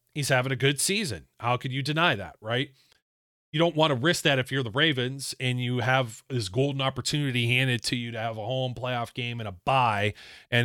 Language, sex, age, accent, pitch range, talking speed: English, male, 30-49, American, 120-145 Hz, 225 wpm